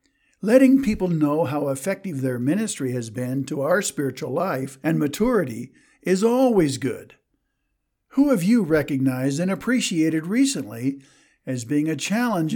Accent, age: American, 60-79